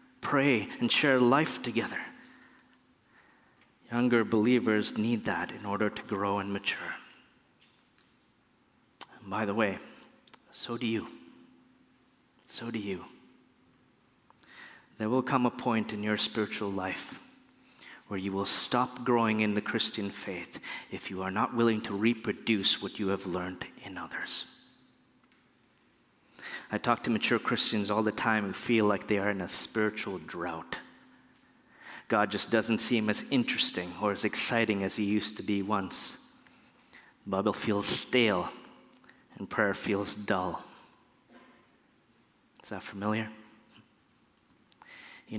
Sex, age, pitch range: male, 30-49, 100-115 Hz